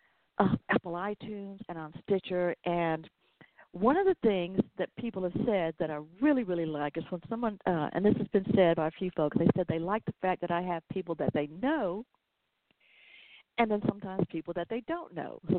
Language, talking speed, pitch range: English, 210 wpm, 170-210 Hz